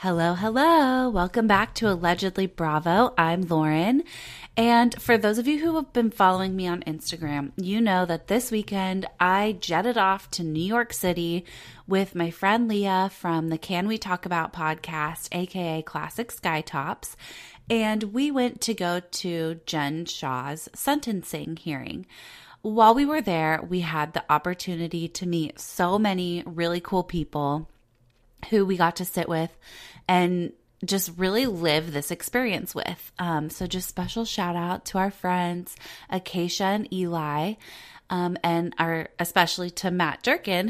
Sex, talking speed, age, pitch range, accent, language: female, 155 wpm, 30-49, 165-210 Hz, American, English